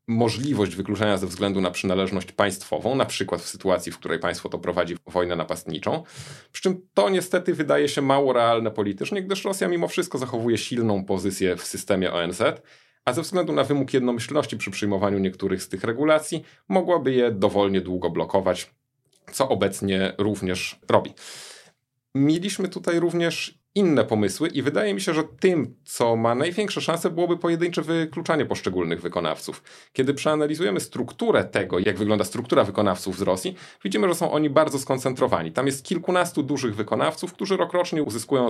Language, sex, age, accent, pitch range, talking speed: Polish, male, 30-49, native, 100-160 Hz, 160 wpm